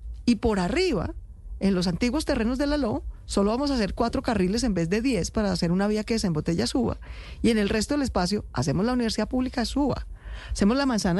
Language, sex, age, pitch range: Spanish, female, 40-59, 180-250 Hz